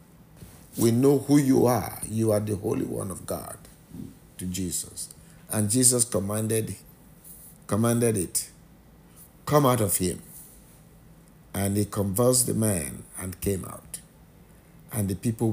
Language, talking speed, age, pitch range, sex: English, 130 wpm, 50-69, 100-130 Hz, male